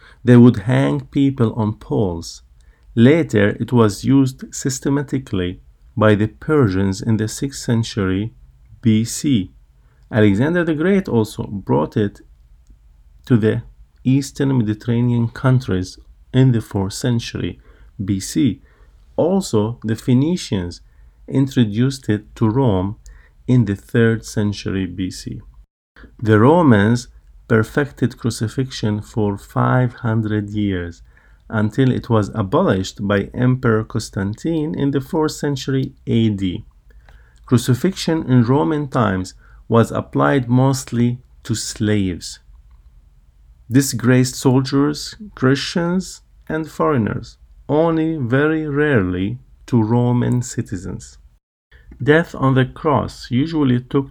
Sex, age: male, 50-69